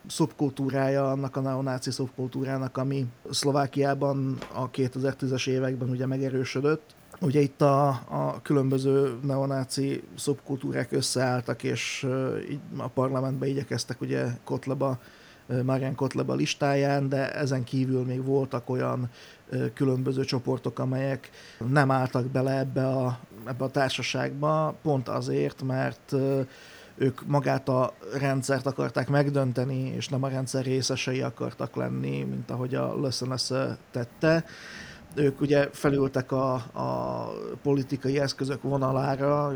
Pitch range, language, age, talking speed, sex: 130-140 Hz, Hungarian, 30-49, 115 wpm, male